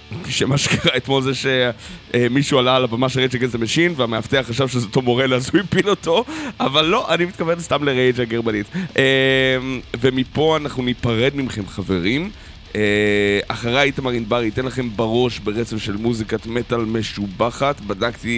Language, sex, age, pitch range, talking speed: Hebrew, male, 20-39, 105-130 Hz, 145 wpm